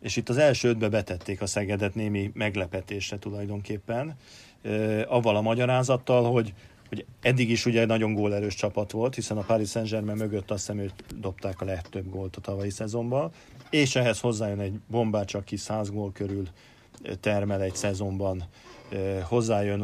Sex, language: male, Hungarian